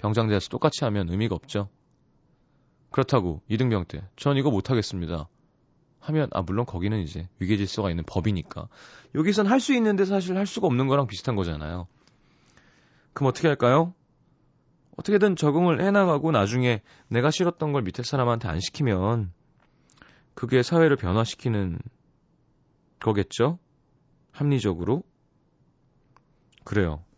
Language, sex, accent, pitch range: Korean, male, native, 95-140 Hz